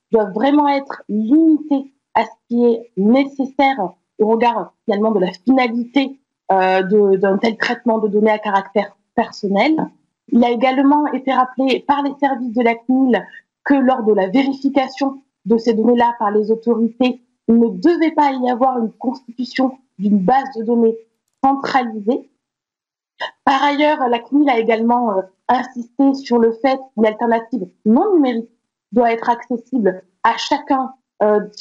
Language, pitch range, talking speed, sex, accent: French, 225-270 Hz, 150 wpm, female, French